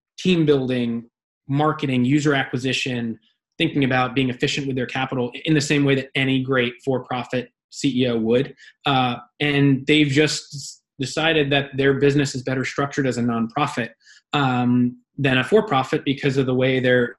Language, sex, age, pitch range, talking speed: English, male, 20-39, 125-150 Hz, 155 wpm